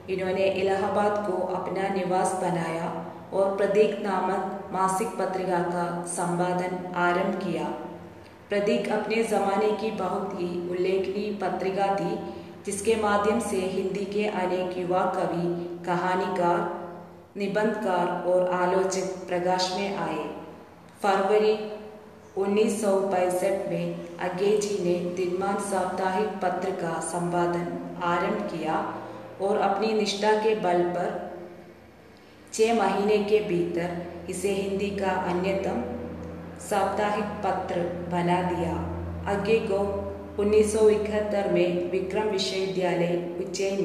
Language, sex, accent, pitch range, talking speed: Hindi, female, native, 180-200 Hz, 105 wpm